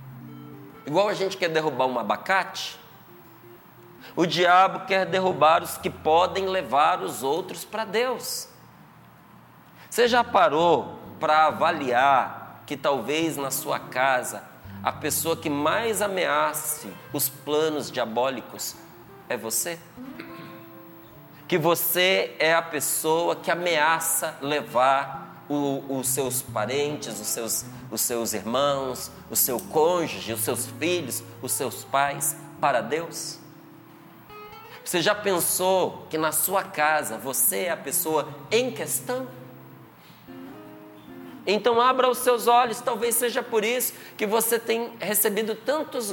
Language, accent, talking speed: Portuguese, Brazilian, 120 wpm